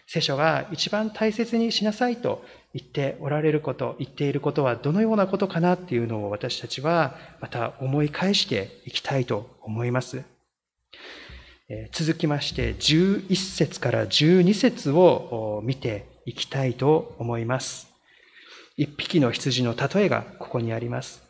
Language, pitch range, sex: Japanese, 130-180 Hz, male